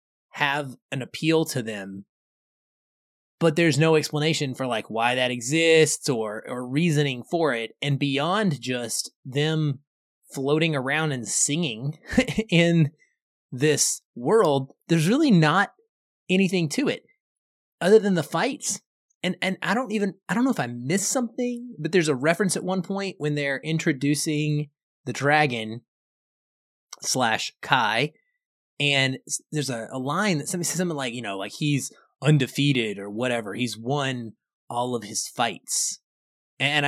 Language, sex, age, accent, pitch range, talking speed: English, male, 20-39, American, 130-175 Hz, 145 wpm